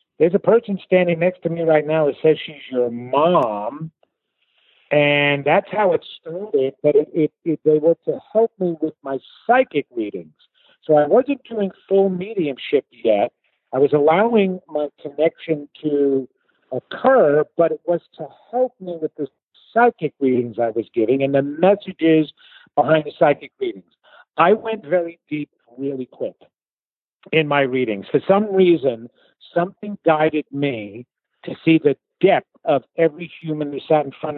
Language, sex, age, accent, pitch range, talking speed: English, male, 50-69, American, 140-180 Hz, 160 wpm